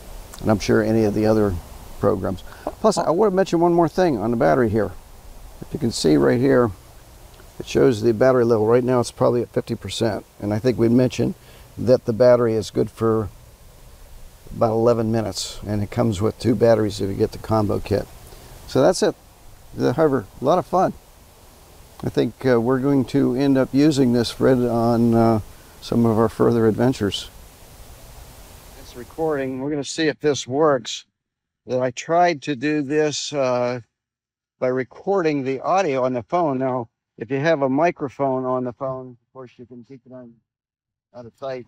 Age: 50-69